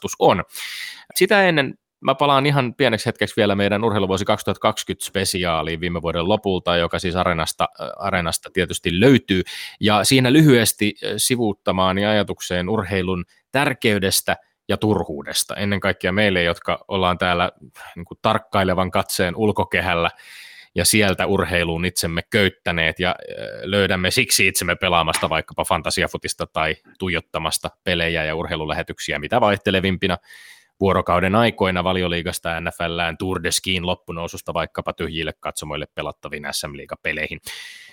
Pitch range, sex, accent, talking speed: 85-105 Hz, male, native, 110 wpm